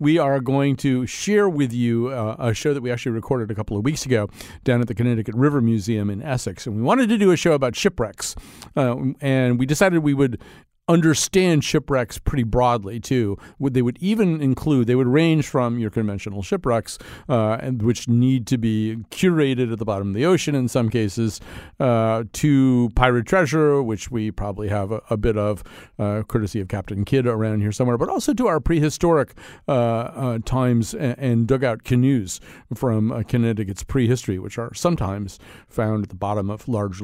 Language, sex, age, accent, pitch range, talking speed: English, male, 40-59, American, 110-140 Hz, 195 wpm